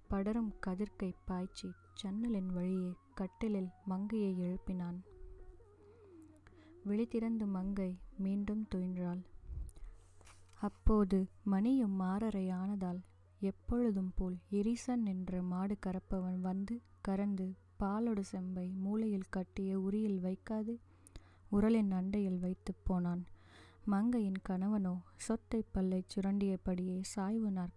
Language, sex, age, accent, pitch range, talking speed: Tamil, female, 20-39, native, 175-205 Hz, 85 wpm